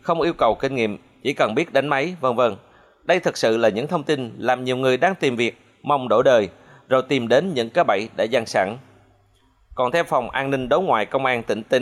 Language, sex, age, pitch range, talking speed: Vietnamese, male, 20-39, 115-150 Hz, 245 wpm